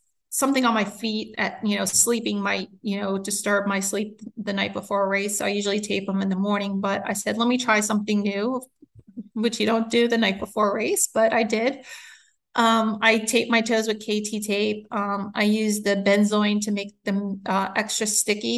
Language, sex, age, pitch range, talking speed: English, female, 30-49, 195-220 Hz, 215 wpm